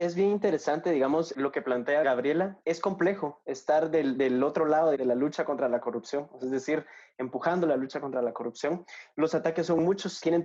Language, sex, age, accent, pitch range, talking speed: Spanish, male, 20-39, Mexican, 140-175 Hz, 195 wpm